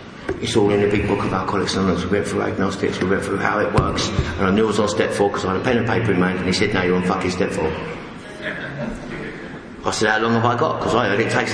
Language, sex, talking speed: English, male, 295 wpm